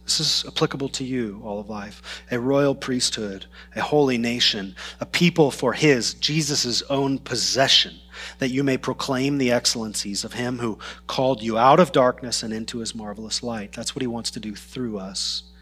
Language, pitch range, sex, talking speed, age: English, 115-155 Hz, male, 185 wpm, 30-49